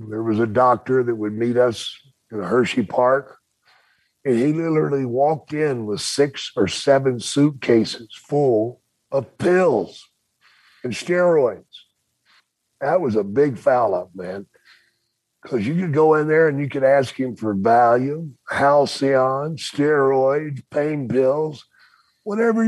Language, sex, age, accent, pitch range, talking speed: English, male, 50-69, American, 125-160 Hz, 140 wpm